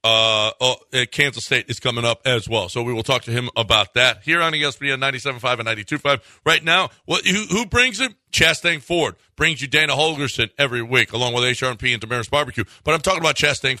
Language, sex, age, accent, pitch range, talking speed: English, male, 50-69, American, 115-145 Hz, 215 wpm